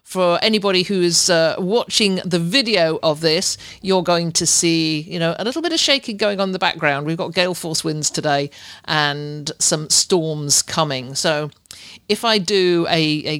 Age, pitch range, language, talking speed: 50-69, 155-210 Hz, English, 190 wpm